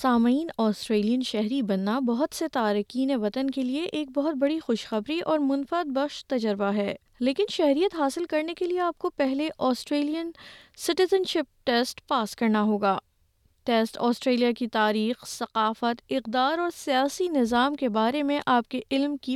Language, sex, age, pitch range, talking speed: Urdu, female, 20-39, 225-290 Hz, 160 wpm